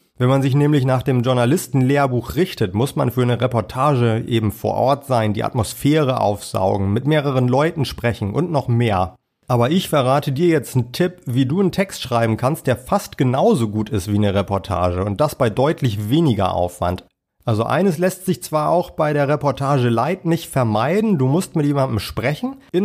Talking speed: 190 wpm